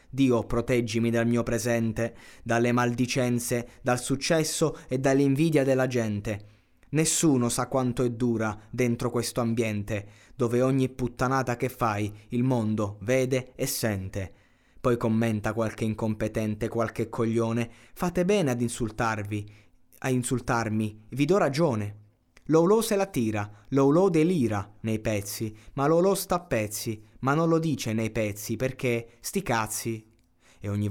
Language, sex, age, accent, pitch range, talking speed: Italian, male, 20-39, native, 105-130 Hz, 135 wpm